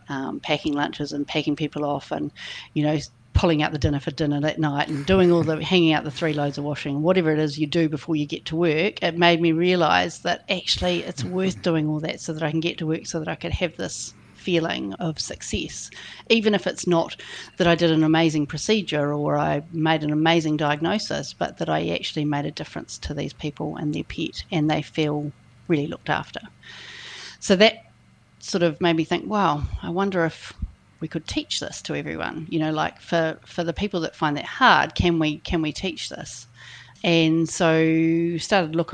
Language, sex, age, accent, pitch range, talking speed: English, female, 40-59, Australian, 150-170 Hz, 215 wpm